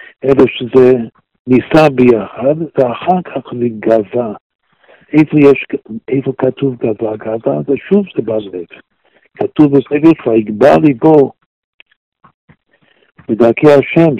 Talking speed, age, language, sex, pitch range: 95 wpm, 60-79, Hebrew, male, 125-165 Hz